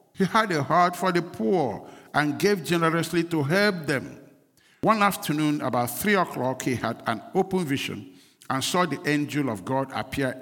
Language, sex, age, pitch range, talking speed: English, male, 60-79, 140-200 Hz, 175 wpm